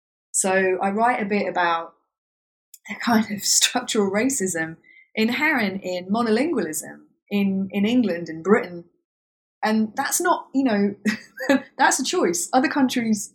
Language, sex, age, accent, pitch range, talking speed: English, female, 20-39, British, 165-230 Hz, 130 wpm